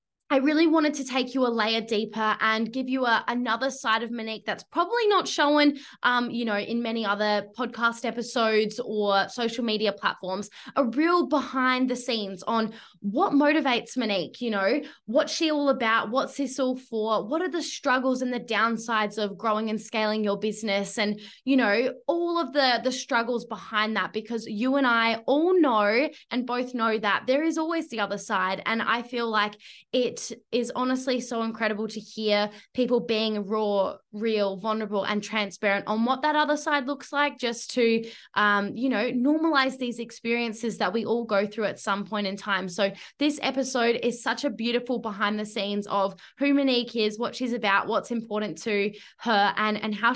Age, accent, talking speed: 10-29, Australian, 190 wpm